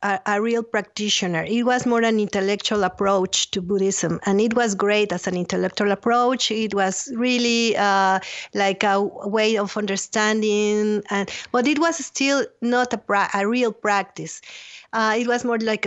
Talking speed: 170 wpm